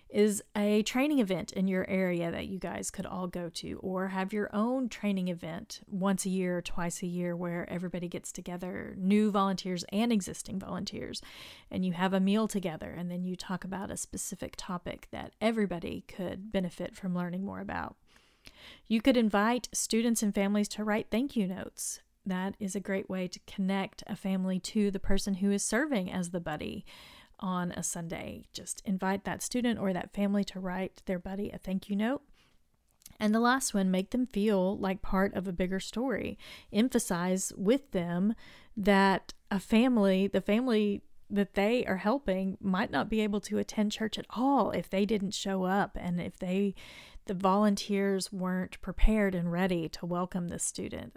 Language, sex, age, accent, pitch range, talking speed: English, female, 30-49, American, 185-210 Hz, 185 wpm